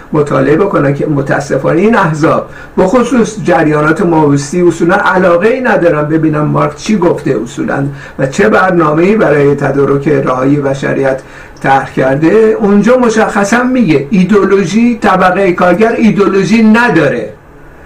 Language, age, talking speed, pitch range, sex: Persian, 60-79, 120 wpm, 180-235 Hz, male